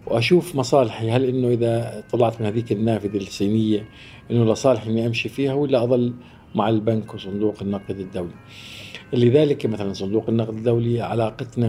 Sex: male